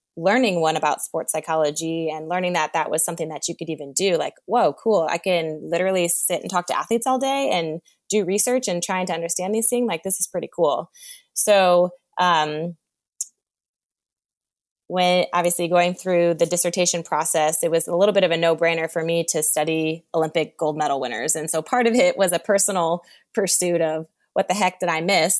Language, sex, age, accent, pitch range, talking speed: English, female, 20-39, American, 155-185 Hz, 200 wpm